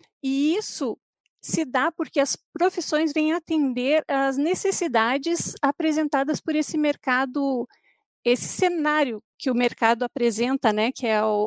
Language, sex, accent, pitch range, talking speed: Portuguese, female, Brazilian, 240-305 Hz, 130 wpm